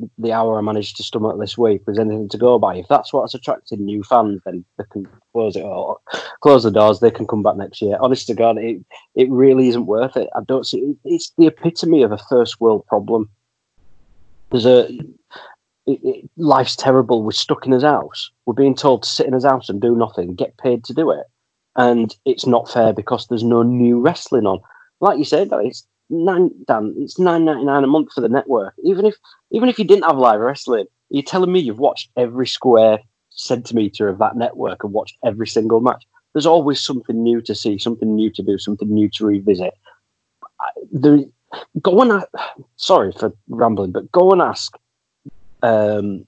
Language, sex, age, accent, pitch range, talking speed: English, male, 30-49, British, 110-145 Hz, 200 wpm